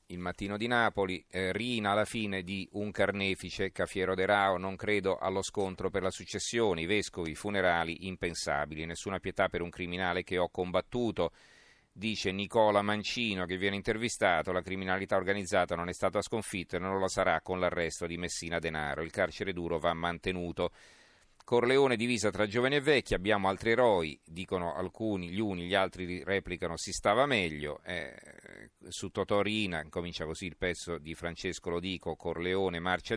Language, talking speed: Italian, 165 wpm